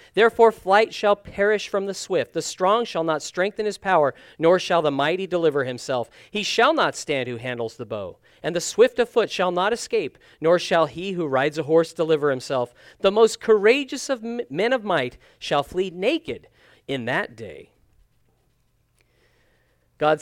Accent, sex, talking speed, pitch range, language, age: American, male, 175 wpm, 130-190 Hz, English, 40-59